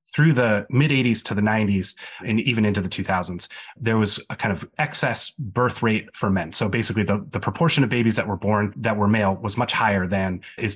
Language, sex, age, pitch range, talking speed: English, male, 30-49, 100-120 Hz, 225 wpm